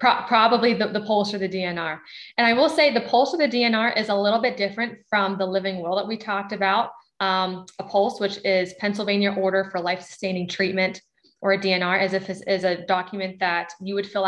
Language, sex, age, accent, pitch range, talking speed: English, female, 20-39, American, 180-210 Hz, 210 wpm